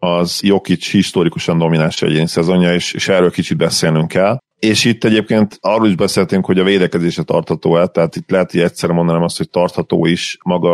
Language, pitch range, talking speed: Hungarian, 85-95 Hz, 180 wpm